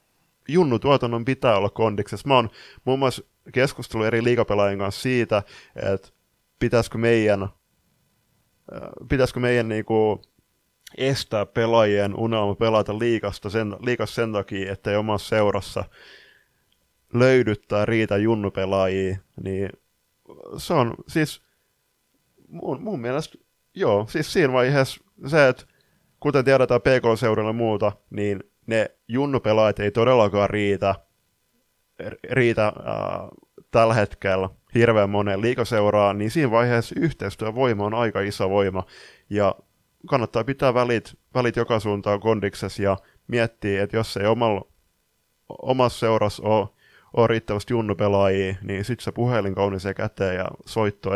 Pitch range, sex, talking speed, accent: 100-120 Hz, male, 120 wpm, native